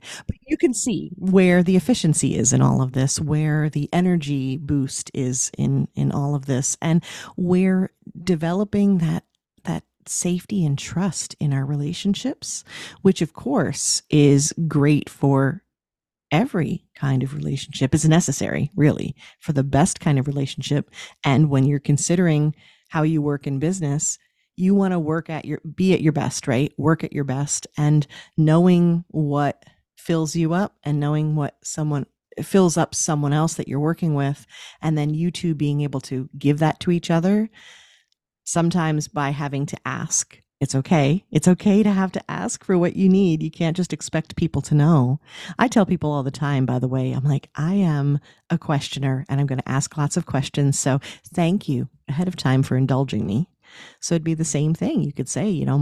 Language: English